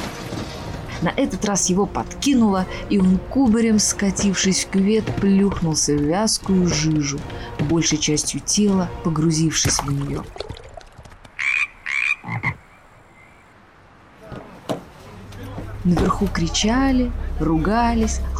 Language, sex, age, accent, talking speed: Russian, female, 20-39, native, 80 wpm